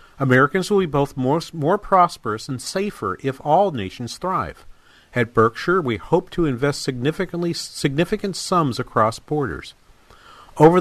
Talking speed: 140 wpm